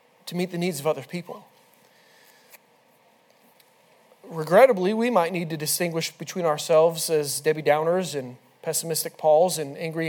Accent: American